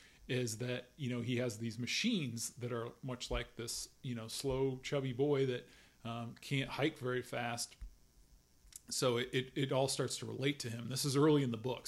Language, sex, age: English, male, 40-59